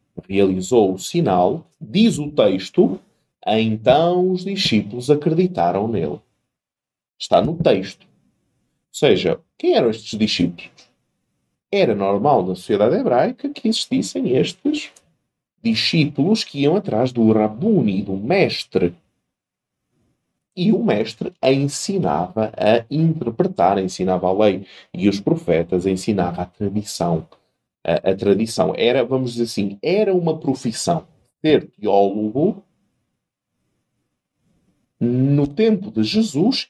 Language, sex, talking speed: Portuguese, male, 115 wpm